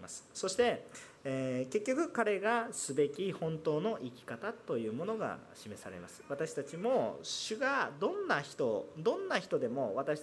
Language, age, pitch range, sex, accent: Japanese, 40-59, 130-220 Hz, male, native